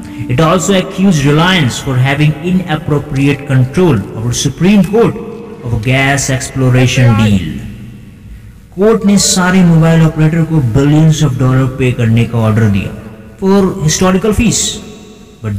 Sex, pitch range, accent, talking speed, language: male, 120-175 Hz, native, 70 wpm, Hindi